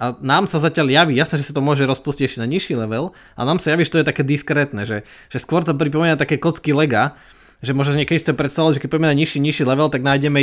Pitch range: 120-150 Hz